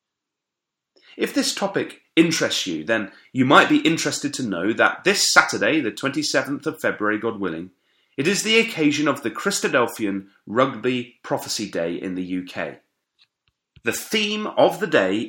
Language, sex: English, male